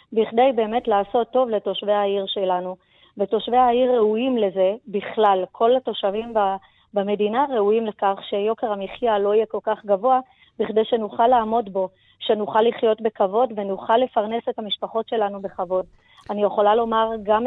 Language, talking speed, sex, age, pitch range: Hebrew, 140 wpm, female, 30-49, 205-245 Hz